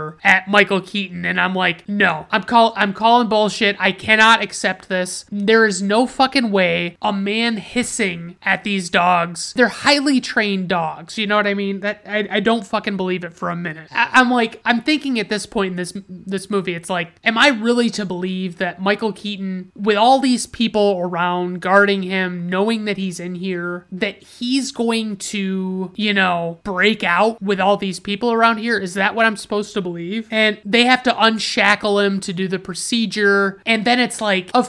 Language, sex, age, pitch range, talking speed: English, male, 30-49, 180-220 Hz, 200 wpm